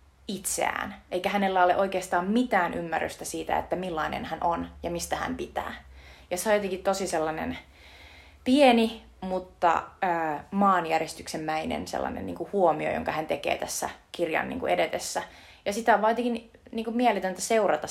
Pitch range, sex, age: 155-200 Hz, female, 30-49